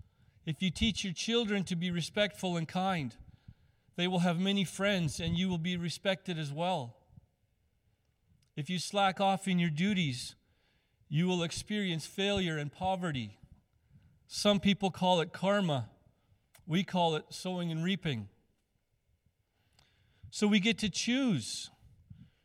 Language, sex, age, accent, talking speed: English, male, 40-59, American, 135 wpm